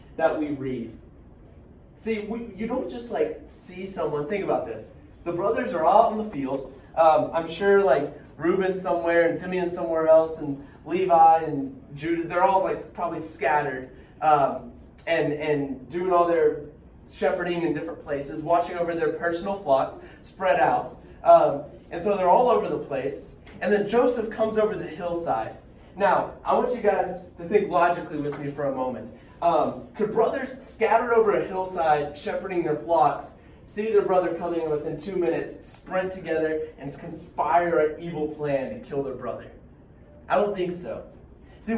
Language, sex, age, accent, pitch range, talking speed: English, male, 20-39, American, 155-215 Hz, 170 wpm